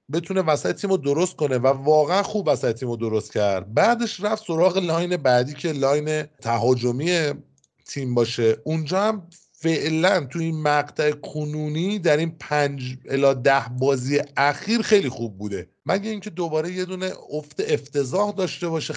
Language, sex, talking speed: Persian, male, 160 wpm